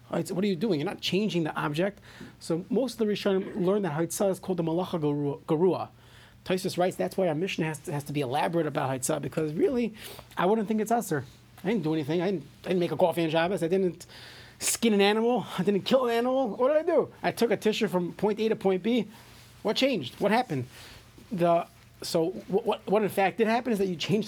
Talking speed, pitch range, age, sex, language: 245 wpm, 160-205 Hz, 30-49, male, English